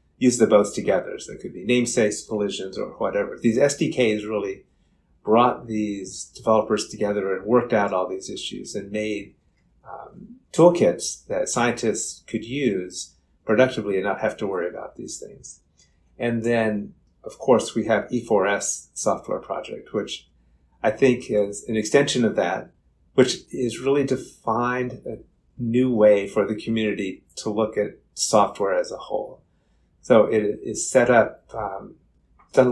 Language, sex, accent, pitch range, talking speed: English, male, American, 100-125 Hz, 150 wpm